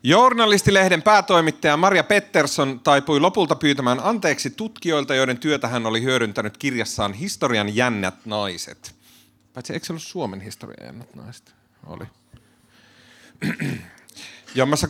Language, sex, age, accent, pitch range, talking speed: Finnish, male, 30-49, native, 110-150 Hz, 105 wpm